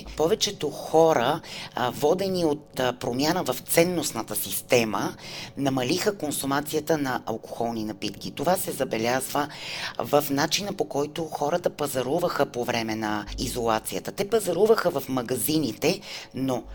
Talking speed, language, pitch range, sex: 110 wpm, Bulgarian, 125-180 Hz, female